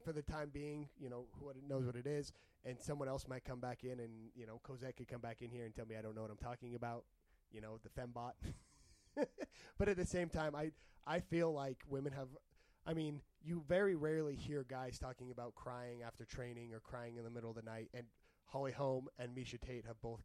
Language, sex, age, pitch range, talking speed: English, male, 20-39, 115-140 Hz, 235 wpm